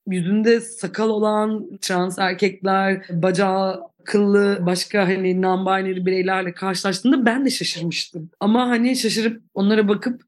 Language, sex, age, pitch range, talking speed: Turkish, female, 30-49, 180-230 Hz, 115 wpm